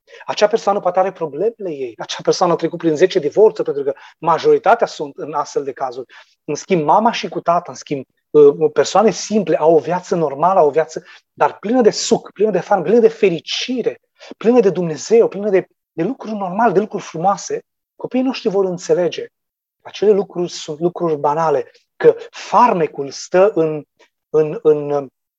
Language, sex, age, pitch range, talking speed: Romanian, male, 30-49, 175-235 Hz, 175 wpm